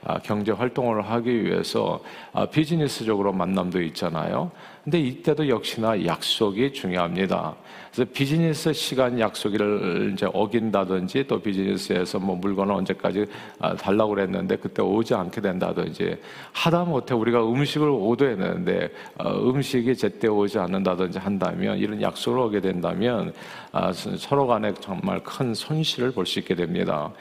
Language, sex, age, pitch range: Korean, male, 50-69, 100-150 Hz